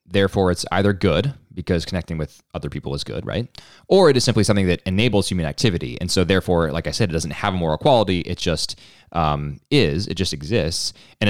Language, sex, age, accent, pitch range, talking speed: English, male, 20-39, American, 80-100 Hz, 220 wpm